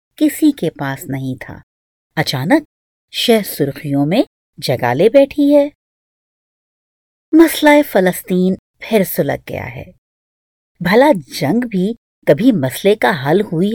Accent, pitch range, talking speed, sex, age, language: Indian, 145-230 Hz, 115 wpm, female, 50-69, English